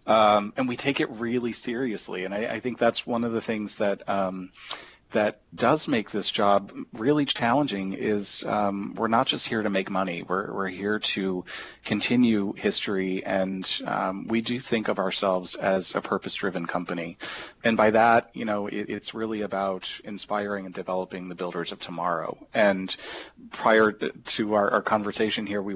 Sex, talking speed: male, 175 wpm